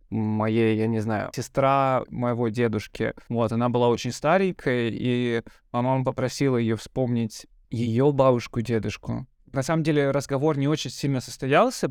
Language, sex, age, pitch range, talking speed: Russian, male, 20-39, 115-130 Hz, 135 wpm